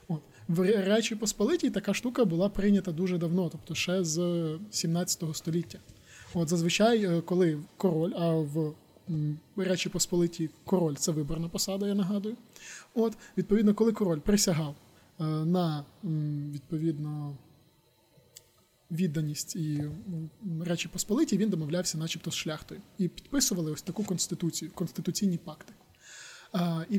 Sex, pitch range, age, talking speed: male, 165-195 Hz, 20-39, 115 wpm